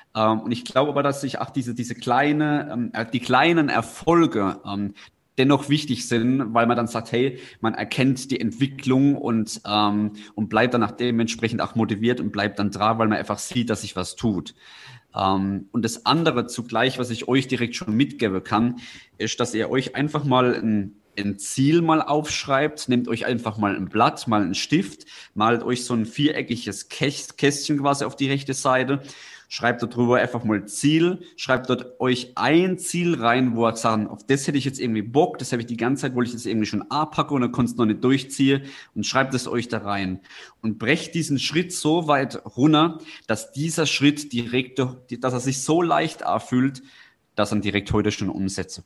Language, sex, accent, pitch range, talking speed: German, male, German, 110-140 Hz, 200 wpm